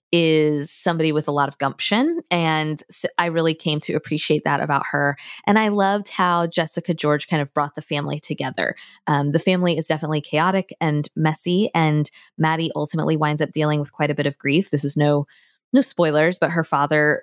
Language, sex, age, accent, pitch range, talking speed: English, female, 20-39, American, 150-190 Hz, 195 wpm